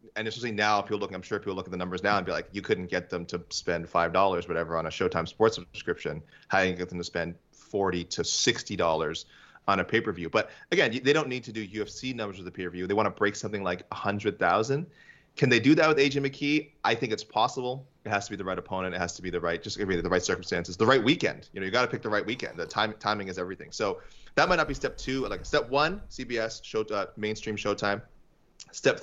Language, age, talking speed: English, 20-39, 265 wpm